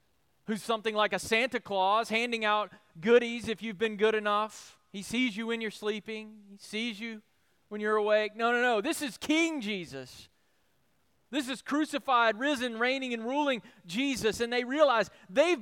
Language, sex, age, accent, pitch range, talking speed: English, male, 30-49, American, 185-245 Hz, 175 wpm